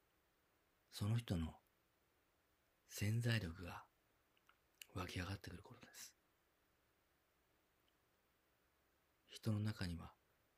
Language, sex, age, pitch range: Japanese, male, 40-59, 80-100 Hz